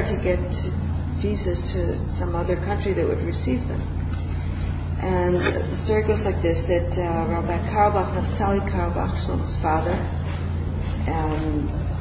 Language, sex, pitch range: English, female, 80-90 Hz